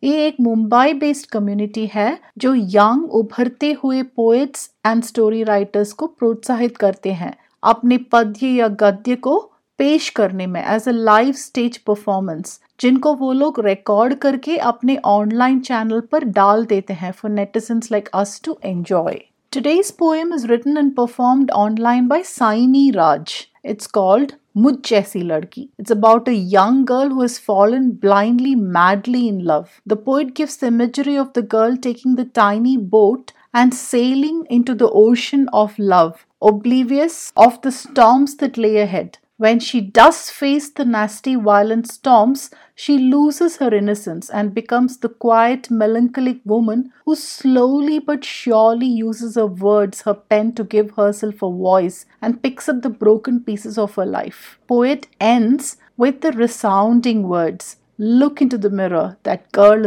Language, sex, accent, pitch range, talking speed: English, female, Indian, 210-265 Hz, 140 wpm